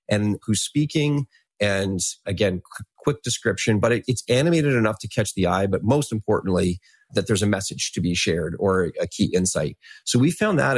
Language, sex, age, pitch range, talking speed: English, male, 30-49, 100-120 Hz, 185 wpm